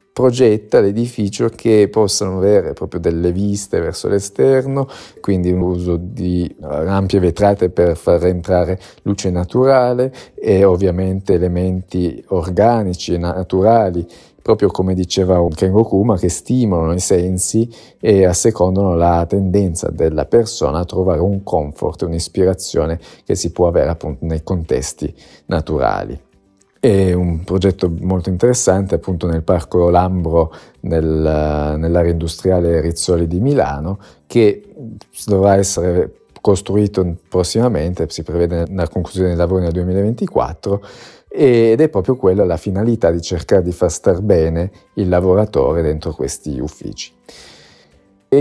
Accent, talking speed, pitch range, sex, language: native, 125 wpm, 85-100 Hz, male, Italian